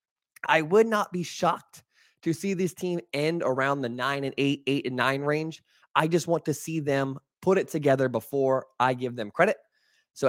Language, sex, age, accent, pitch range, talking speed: English, male, 20-39, American, 135-185 Hz, 200 wpm